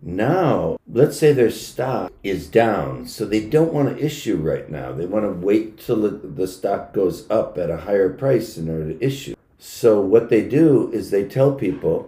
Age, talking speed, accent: 60-79, 205 wpm, American